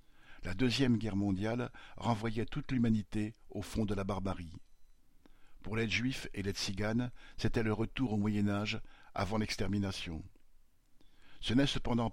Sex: male